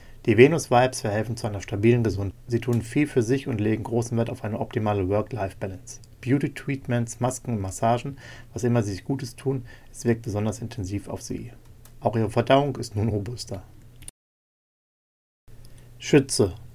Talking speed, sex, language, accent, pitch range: 155 wpm, male, German, German, 105-125 Hz